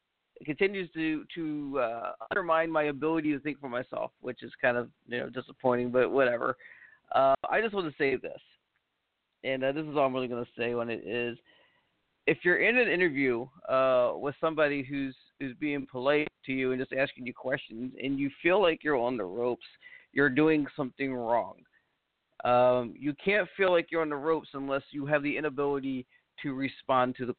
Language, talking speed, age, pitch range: English, 195 wpm, 40-59, 130-160 Hz